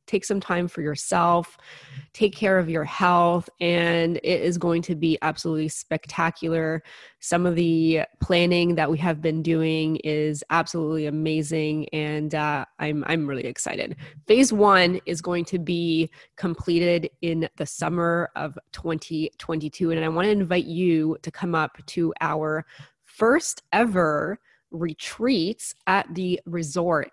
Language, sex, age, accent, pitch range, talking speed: English, female, 20-39, American, 160-175 Hz, 145 wpm